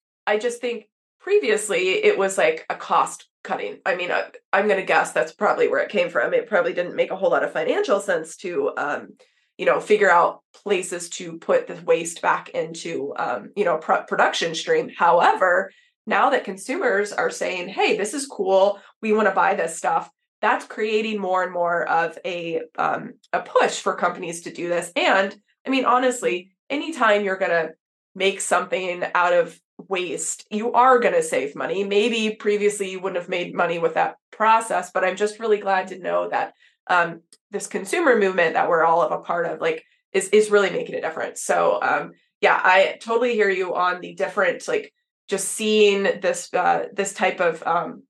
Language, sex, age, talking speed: English, female, 20-39, 190 wpm